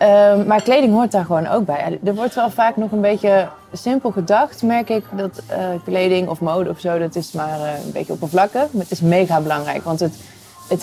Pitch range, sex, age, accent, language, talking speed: 170-215 Hz, female, 20-39, Dutch, Dutch, 225 wpm